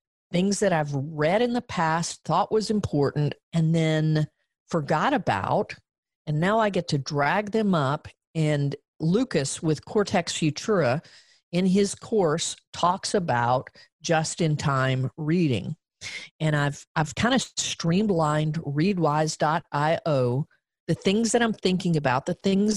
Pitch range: 145-200 Hz